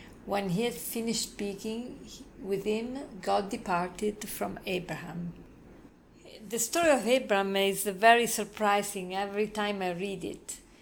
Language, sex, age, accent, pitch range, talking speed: English, female, 40-59, Italian, 190-225 Hz, 130 wpm